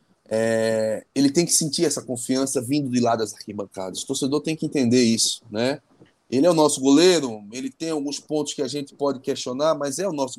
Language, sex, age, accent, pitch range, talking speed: Portuguese, male, 20-39, Brazilian, 120-165 Hz, 210 wpm